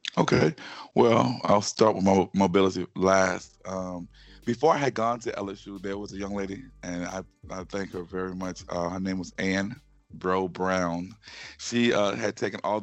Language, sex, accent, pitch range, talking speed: English, male, American, 90-100 Hz, 180 wpm